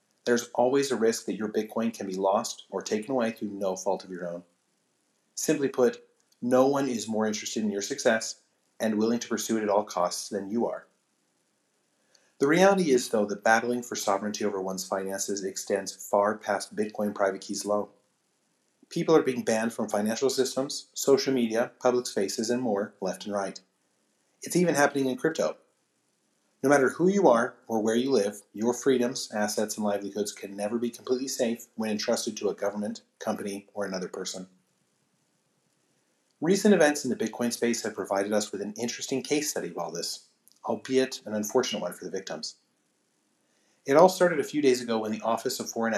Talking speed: 185 wpm